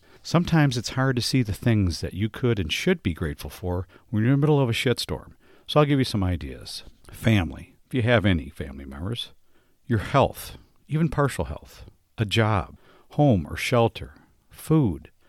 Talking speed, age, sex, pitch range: 185 wpm, 50-69, male, 90-125 Hz